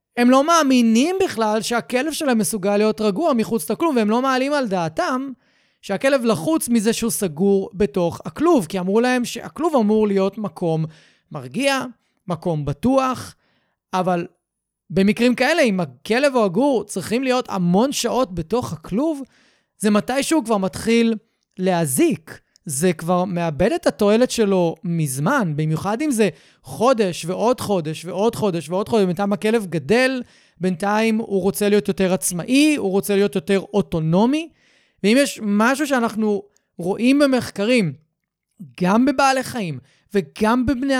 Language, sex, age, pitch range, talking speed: Hebrew, male, 30-49, 185-250 Hz, 140 wpm